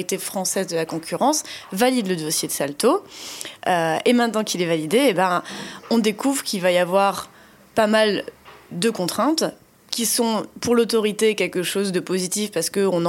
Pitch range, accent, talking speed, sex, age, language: 185-230 Hz, French, 170 wpm, female, 20-39, French